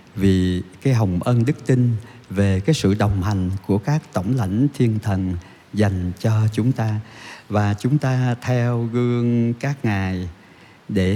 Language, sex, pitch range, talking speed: Vietnamese, male, 100-120 Hz, 155 wpm